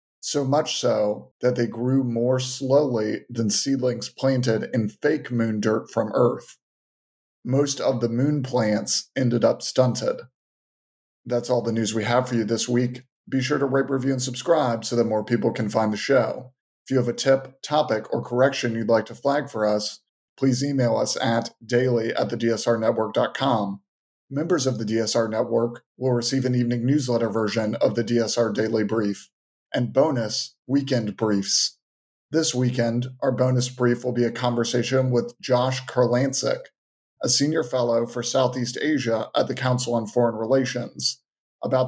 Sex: male